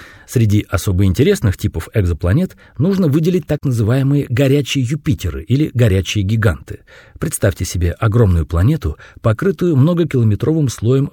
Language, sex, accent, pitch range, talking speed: Russian, male, native, 95-140 Hz, 115 wpm